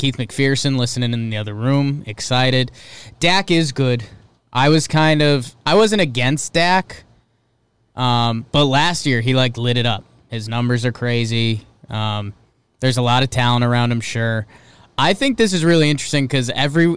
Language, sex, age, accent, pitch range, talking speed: English, male, 20-39, American, 120-150 Hz, 175 wpm